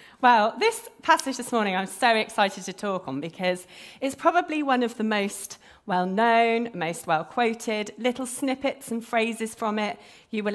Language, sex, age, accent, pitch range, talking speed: English, female, 40-59, British, 170-230 Hz, 165 wpm